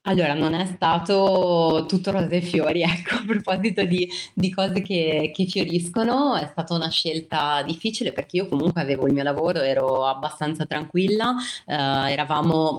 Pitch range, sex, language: 140-170 Hz, female, Italian